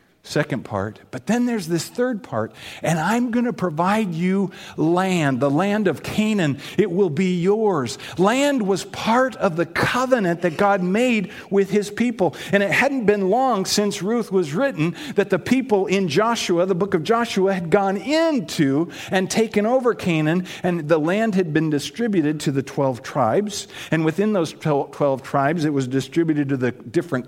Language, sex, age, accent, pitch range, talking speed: English, male, 50-69, American, 145-205 Hz, 180 wpm